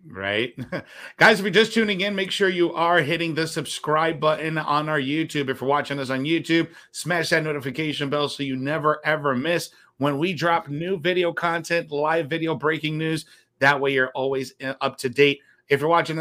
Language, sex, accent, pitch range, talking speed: English, male, American, 135-170 Hz, 195 wpm